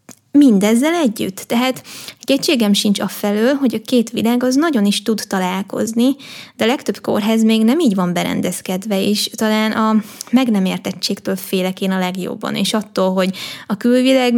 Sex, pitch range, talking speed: female, 200-245 Hz, 165 wpm